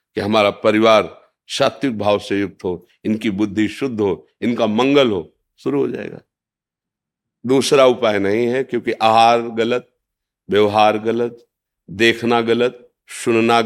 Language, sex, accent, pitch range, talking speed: Hindi, male, native, 115-155 Hz, 130 wpm